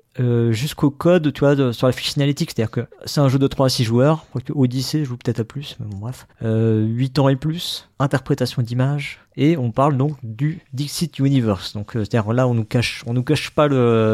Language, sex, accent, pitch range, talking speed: French, male, French, 110-140 Hz, 260 wpm